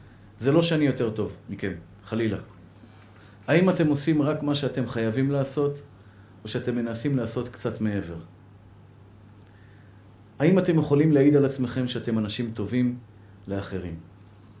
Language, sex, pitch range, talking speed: Hebrew, male, 105-135 Hz, 125 wpm